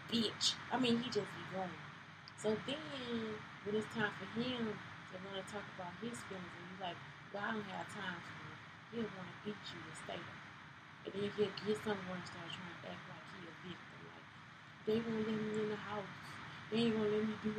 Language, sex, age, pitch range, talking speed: English, female, 20-39, 165-215 Hz, 230 wpm